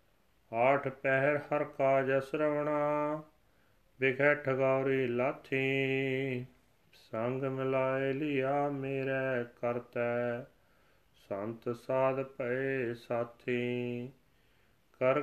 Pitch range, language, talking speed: 120-140 Hz, Punjabi, 60 wpm